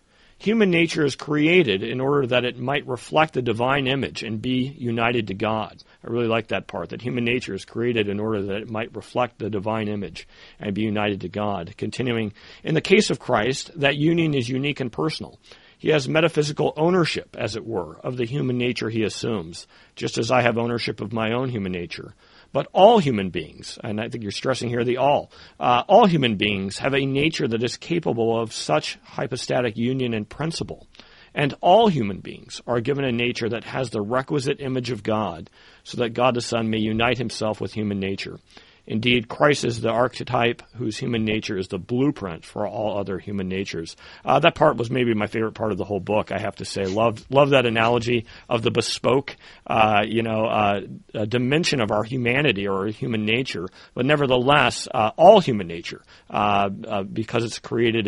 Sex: male